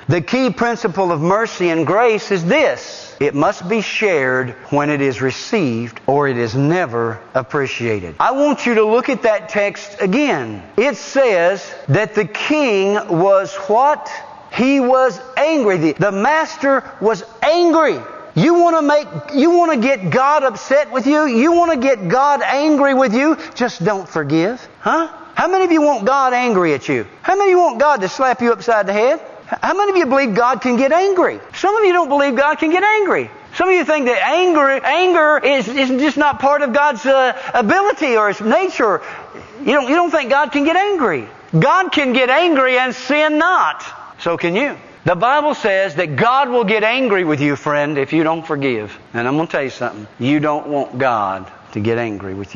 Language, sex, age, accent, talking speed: English, male, 50-69, American, 200 wpm